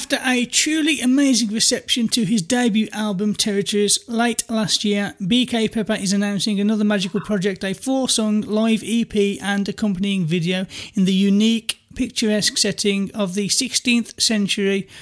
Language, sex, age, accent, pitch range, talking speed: English, male, 30-49, British, 190-215 Hz, 145 wpm